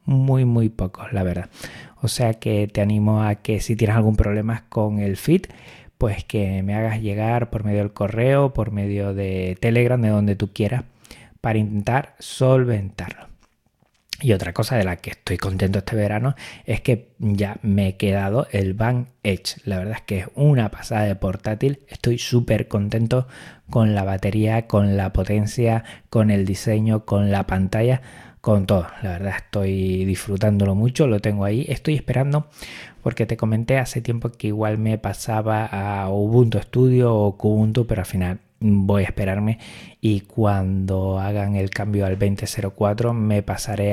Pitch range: 100-115 Hz